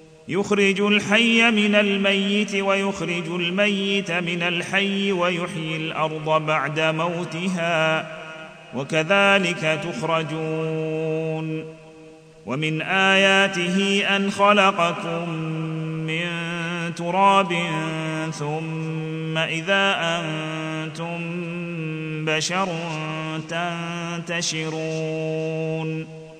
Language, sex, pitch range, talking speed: Arabic, male, 160-195 Hz, 55 wpm